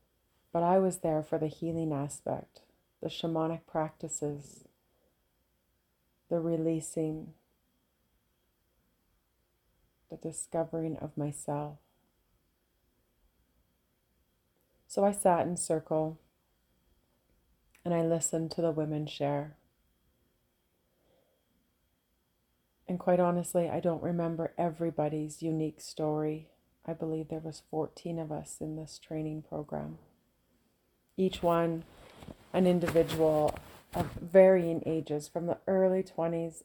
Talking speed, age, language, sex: 100 wpm, 30-49, English, female